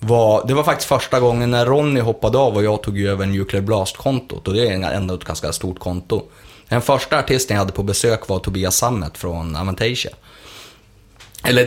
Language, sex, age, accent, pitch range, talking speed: Swedish, male, 30-49, native, 100-130 Hz, 195 wpm